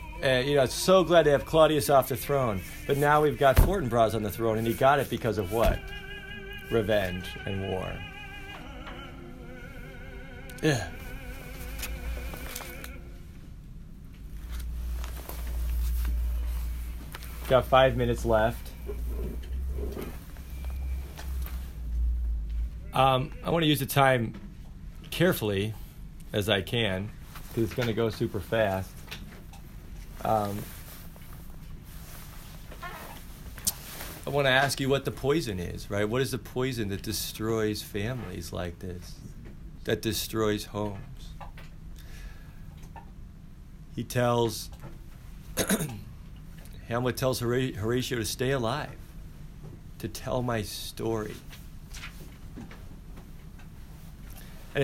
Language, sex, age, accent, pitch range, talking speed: English, male, 30-49, American, 80-125 Hz, 95 wpm